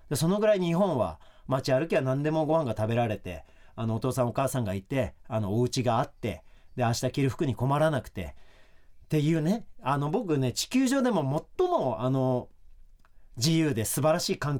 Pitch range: 120-165 Hz